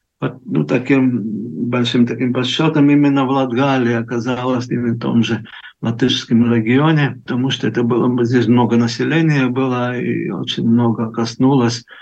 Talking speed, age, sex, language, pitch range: 140 wpm, 50-69, male, Russian, 120-140 Hz